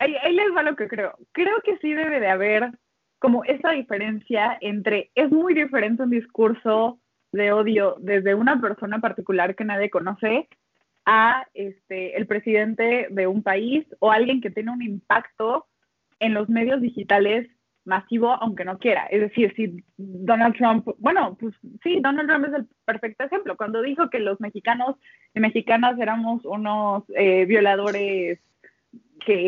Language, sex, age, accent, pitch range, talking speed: Spanish, female, 20-39, Mexican, 210-260 Hz, 155 wpm